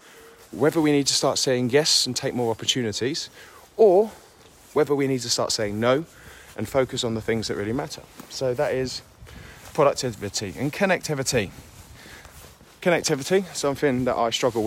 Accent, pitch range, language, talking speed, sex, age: British, 120-155 Hz, English, 155 wpm, male, 30-49